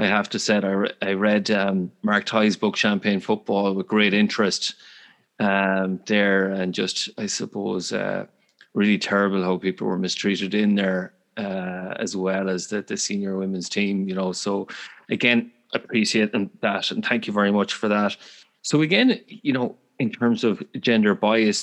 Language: English